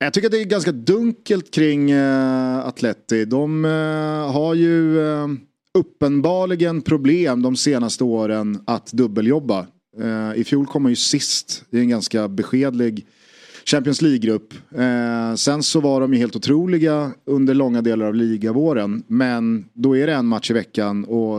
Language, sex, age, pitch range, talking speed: Swedish, male, 30-49, 110-145 Hz, 160 wpm